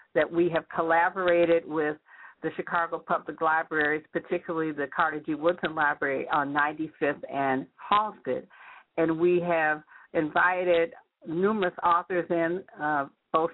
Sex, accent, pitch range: female, American, 155-175 Hz